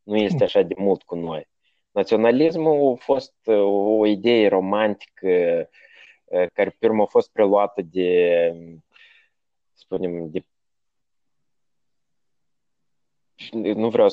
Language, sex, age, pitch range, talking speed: Romanian, male, 20-39, 95-145 Hz, 100 wpm